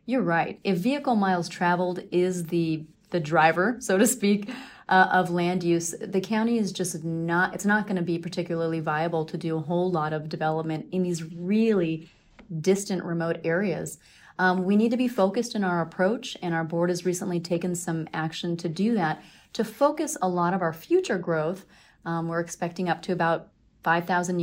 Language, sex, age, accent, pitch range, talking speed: English, female, 30-49, American, 170-210 Hz, 190 wpm